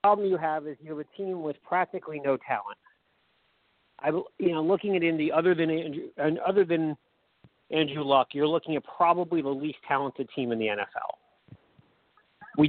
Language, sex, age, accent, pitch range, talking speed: English, male, 40-59, American, 145-175 Hz, 185 wpm